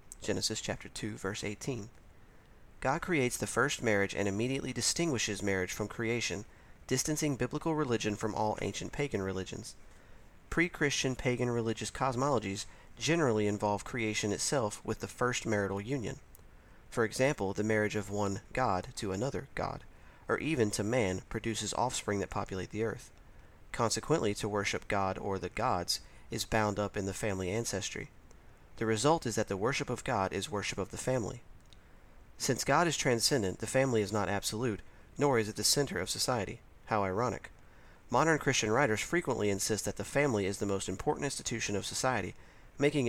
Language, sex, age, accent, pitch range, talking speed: English, male, 40-59, American, 100-125 Hz, 165 wpm